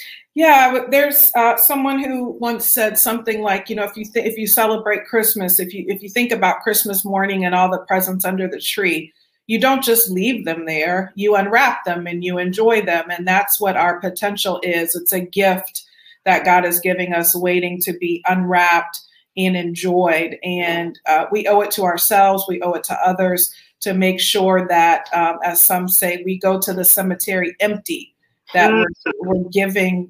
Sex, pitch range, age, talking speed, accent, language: female, 175-200 Hz, 40-59, 190 wpm, American, English